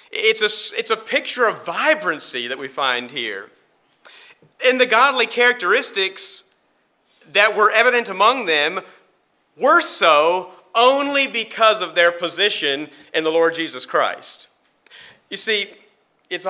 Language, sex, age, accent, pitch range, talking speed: English, male, 40-59, American, 175-250 Hz, 125 wpm